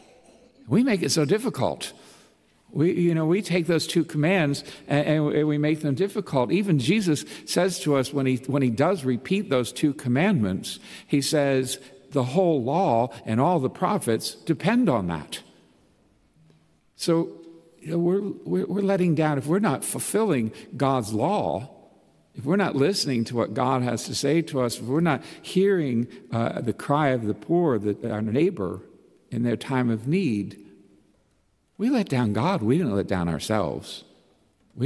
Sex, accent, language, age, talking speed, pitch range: male, American, English, 60-79, 170 wpm, 115-170 Hz